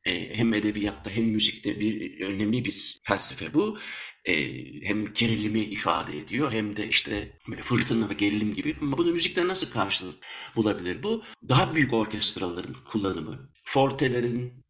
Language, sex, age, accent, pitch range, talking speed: Turkish, male, 60-79, native, 105-135 Hz, 135 wpm